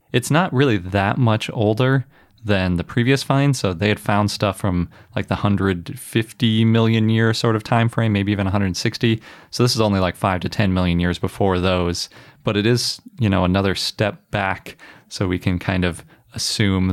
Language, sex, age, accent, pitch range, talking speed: English, male, 20-39, American, 95-115 Hz, 190 wpm